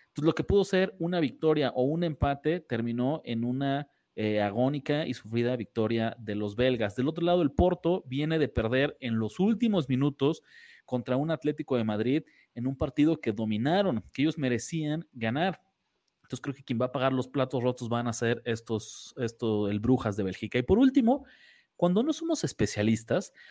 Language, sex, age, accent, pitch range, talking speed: Spanish, male, 30-49, Mexican, 115-170 Hz, 180 wpm